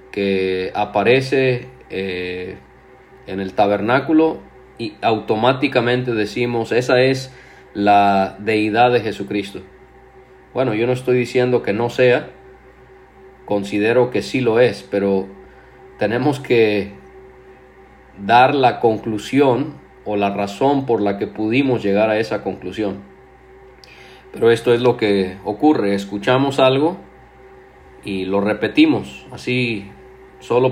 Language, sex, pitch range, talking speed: Spanish, male, 100-125 Hz, 115 wpm